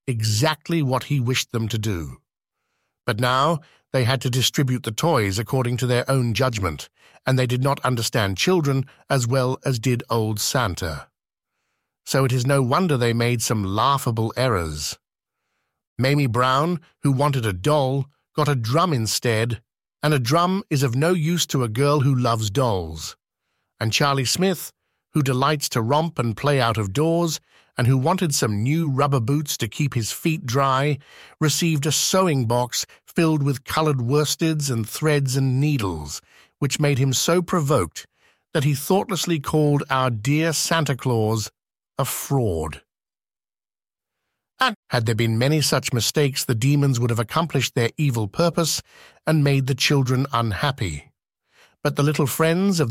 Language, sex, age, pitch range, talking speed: English, male, 50-69, 120-150 Hz, 160 wpm